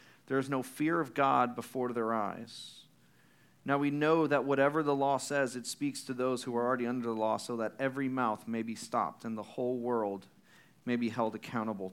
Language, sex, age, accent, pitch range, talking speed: English, male, 40-59, American, 115-140 Hz, 210 wpm